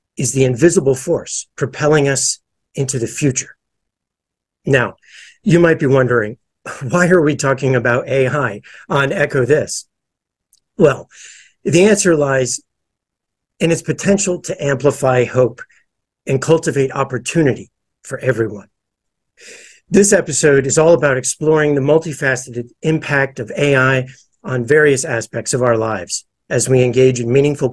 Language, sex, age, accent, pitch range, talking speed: English, male, 50-69, American, 130-155 Hz, 130 wpm